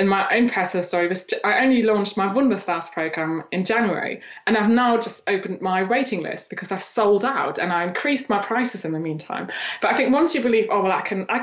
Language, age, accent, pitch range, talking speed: English, 20-39, British, 190-270 Hz, 230 wpm